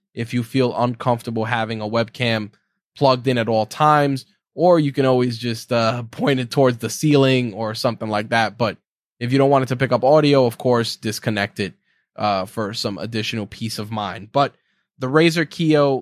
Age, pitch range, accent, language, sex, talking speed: 10-29, 115-135 Hz, American, English, male, 195 wpm